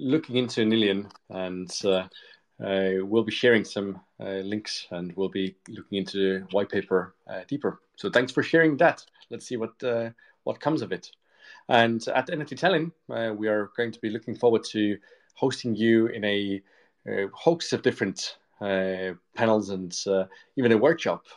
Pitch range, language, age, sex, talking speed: 95-115 Hz, English, 30-49, male, 175 wpm